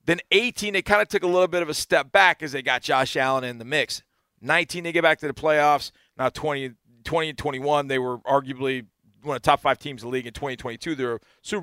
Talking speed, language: 260 wpm, English